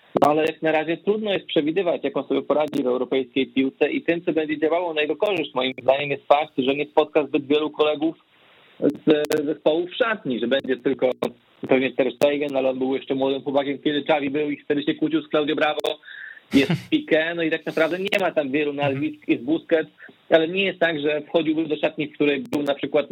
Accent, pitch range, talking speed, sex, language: native, 140-165 Hz, 220 wpm, male, Polish